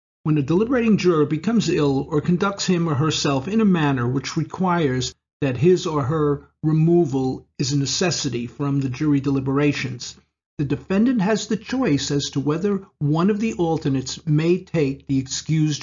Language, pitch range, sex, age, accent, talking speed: English, 135-185 Hz, male, 50-69, American, 165 wpm